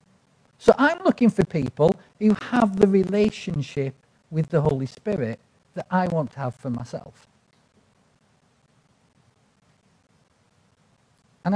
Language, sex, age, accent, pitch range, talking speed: English, male, 50-69, British, 135-195 Hz, 110 wpm